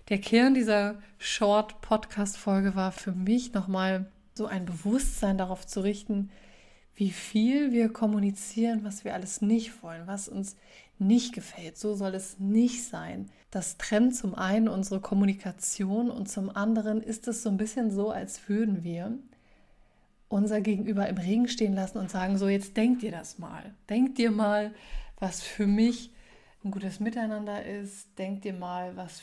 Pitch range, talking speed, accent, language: 195-220 Hz, 160 wpm, German, German